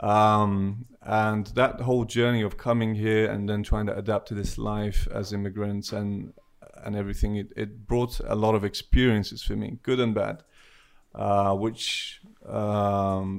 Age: 20-39